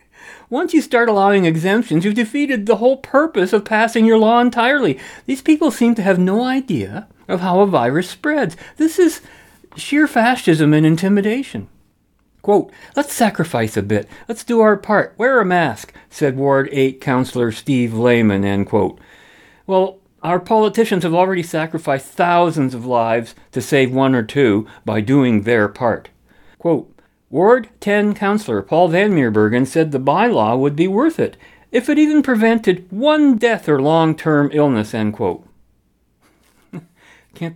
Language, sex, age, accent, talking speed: English, male, 50-69, American, 155 wpm